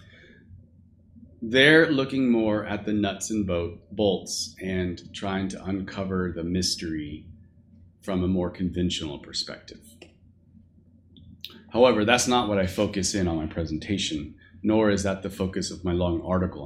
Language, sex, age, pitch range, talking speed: English, male, 40-59, 90-110 Hz, 135 wpm